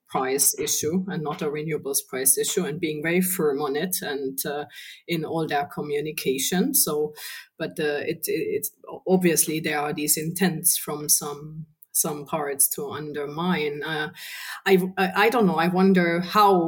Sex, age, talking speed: female, 30-49, 165 wpm